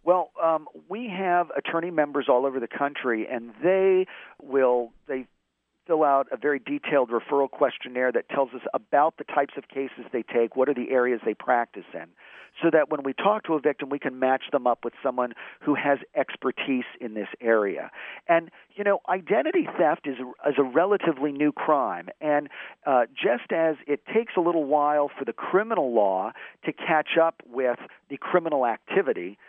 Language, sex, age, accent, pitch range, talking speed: English, male, 50-69, American, 125-165 Hz, 185 wpm